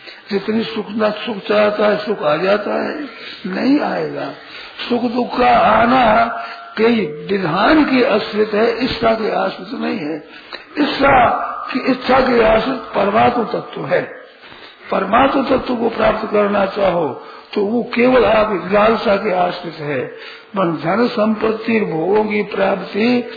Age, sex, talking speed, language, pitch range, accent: 50-69, male, 130 wpm, Hindi, 180-230 Hz, native